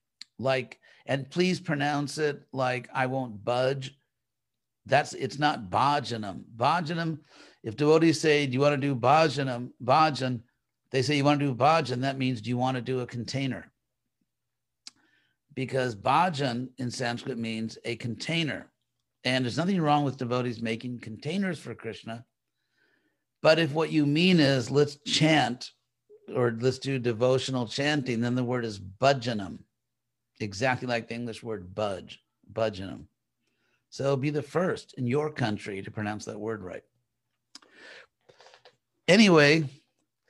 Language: English